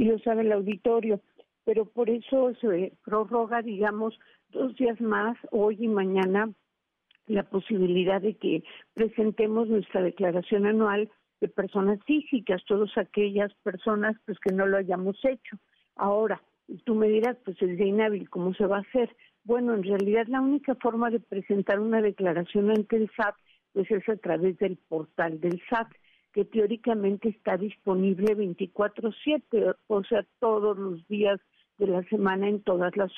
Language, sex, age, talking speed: Spanish, female, 50-69, 160 wpm